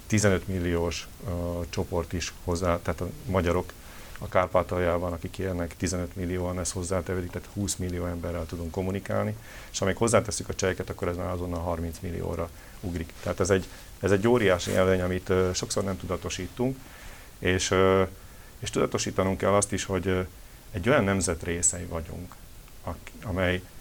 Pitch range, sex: 85-100 Hz, male